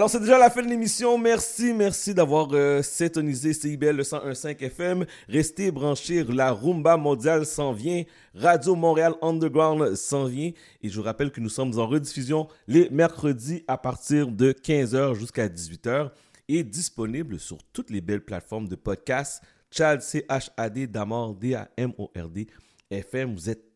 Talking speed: 150 wpm